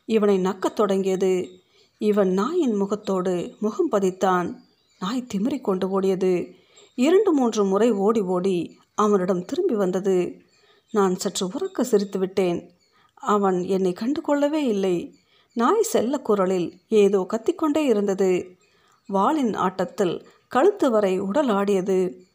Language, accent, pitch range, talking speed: Tamil, native, 185-235 Hz, 105 wpm